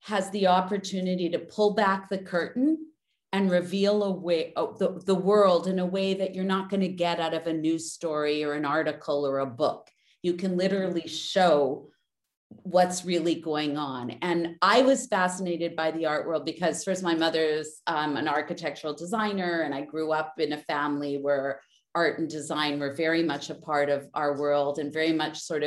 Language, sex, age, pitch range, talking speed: English, female, 40-59, 145-180 Hz, 195 wpm